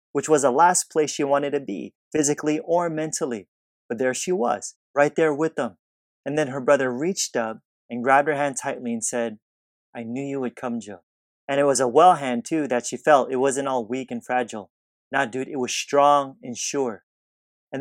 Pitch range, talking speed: 120-145 Hz, 210 wpm